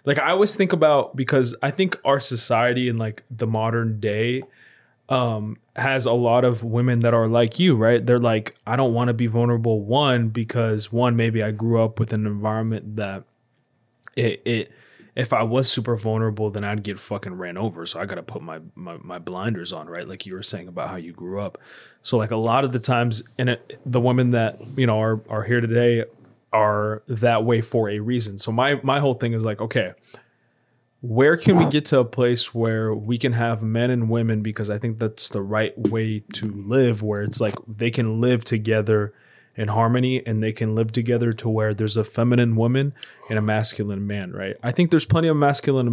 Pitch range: 110-125 Hz